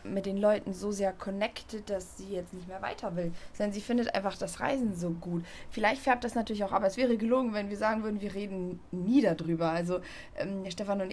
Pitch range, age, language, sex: 190-230 Hz, 20-39, German, female